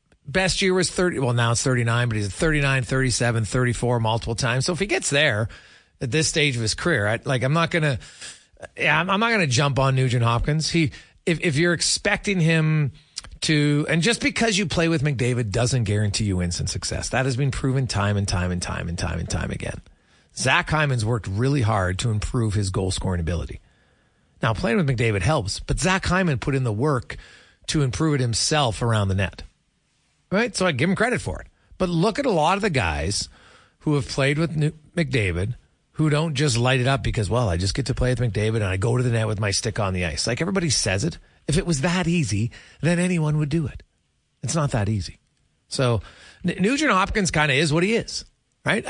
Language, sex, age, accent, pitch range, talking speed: English, male, 40-59, American, 110-165 Hz, 225 wpm